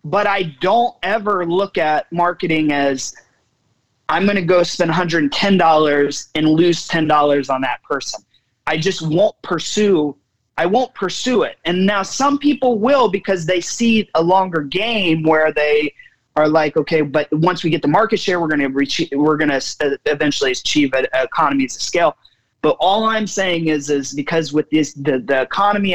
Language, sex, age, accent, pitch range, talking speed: English, male, 30-49, American, 145-195 Hz, 180 wpm